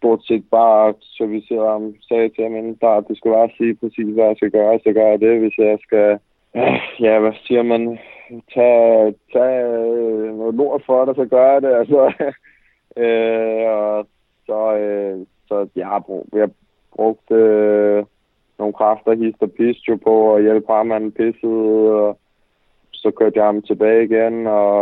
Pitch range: 100-110 Hz